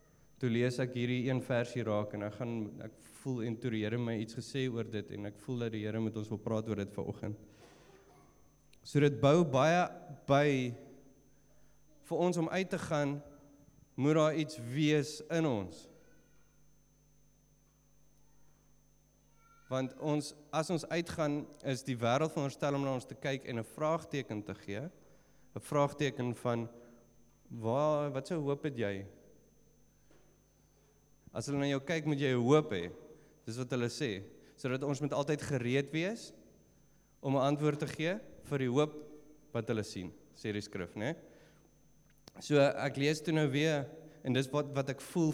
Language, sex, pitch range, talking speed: English, male, 120-150 Hz, 170 wpm